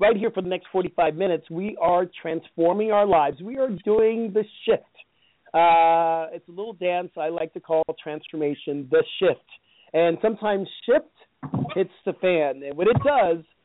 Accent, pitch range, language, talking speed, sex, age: American, 165-215 Hz, English, 170 wpm, male, 40-59